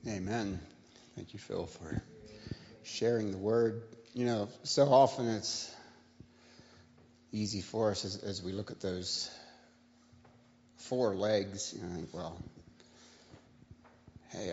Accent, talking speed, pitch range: American, 115 wpm, 80-105 Hz